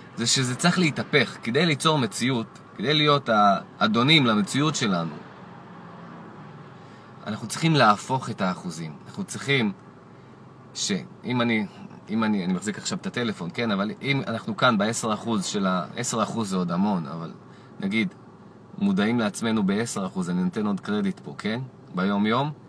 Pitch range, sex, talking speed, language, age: 120-185 Hz, male, 145 wpm, Hebrew, 30-49